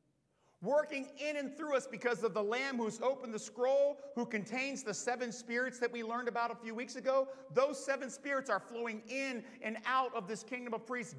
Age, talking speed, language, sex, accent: 50-69, 210 wpm, English, male, American